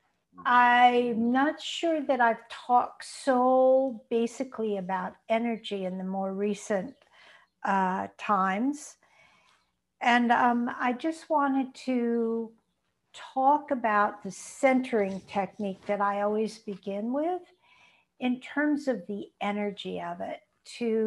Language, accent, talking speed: English, American, 115 wpm